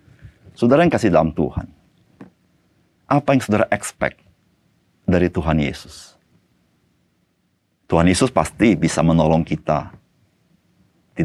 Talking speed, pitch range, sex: 100 wpm, 85-115 Hz, male